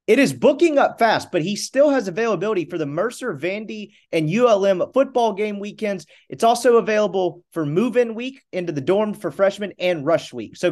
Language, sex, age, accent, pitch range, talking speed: English, male, 30-49, American, 155-215 Hz, 190 wpm